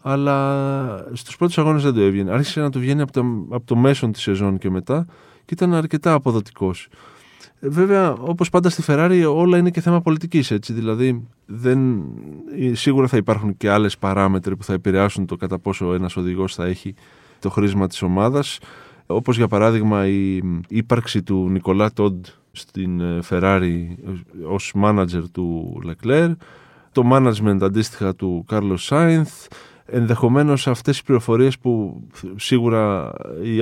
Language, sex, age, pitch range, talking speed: Greek, male, 20-39, 95-130 Hz, 150 wpm